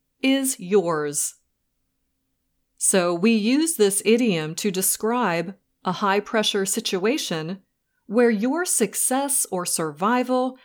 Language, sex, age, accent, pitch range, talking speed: English, female, 30-49, American, 175-245 Hz, 100 wpm